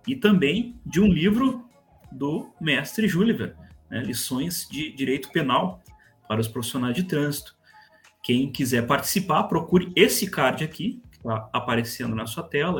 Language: Portuguese